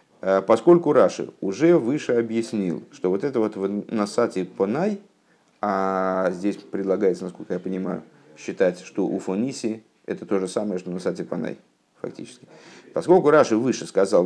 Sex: male